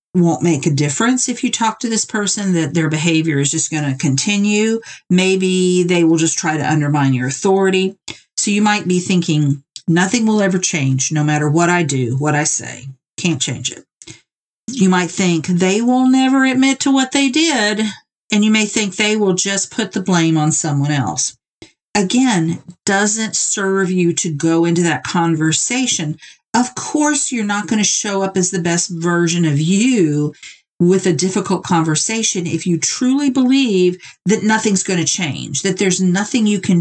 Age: 50-69